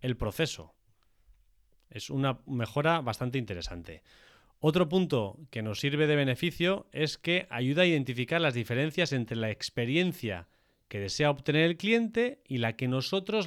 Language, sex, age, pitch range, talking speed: Spanish, male, 30-49, 115-160 Hz, 145 wpm